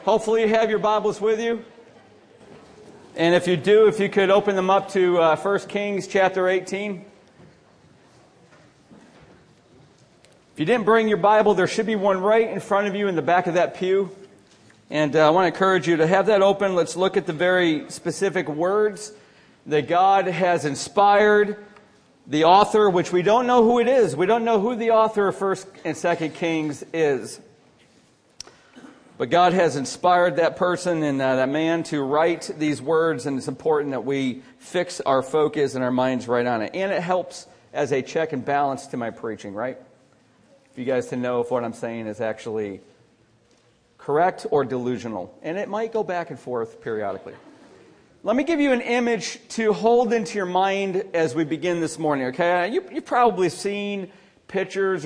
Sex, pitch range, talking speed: male, 155-205 Hz, 185 wpm